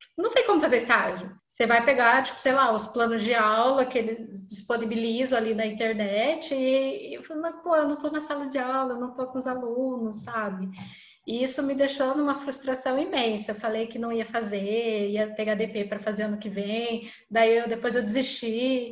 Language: Portuguese